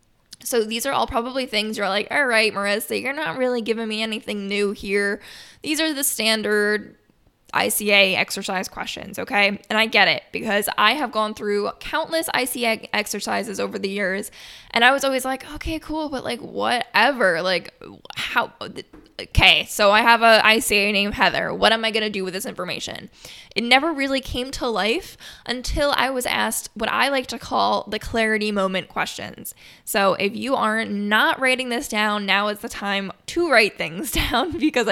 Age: 10-29